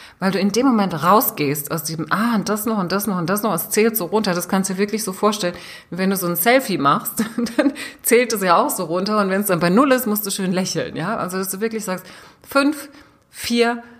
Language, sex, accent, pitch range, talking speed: German, female, German, 165-215 Hz, 260 wpm